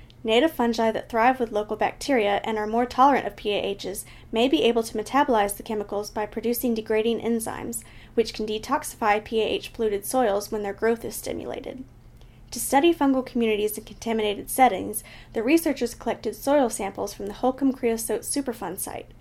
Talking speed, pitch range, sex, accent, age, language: 160 wpm, 210-250 Hz, female, American, 10-29, English